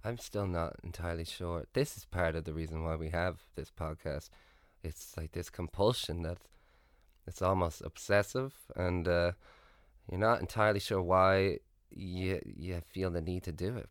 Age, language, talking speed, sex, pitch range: 20-39, English, 170 wpm, male, 85-105 Hz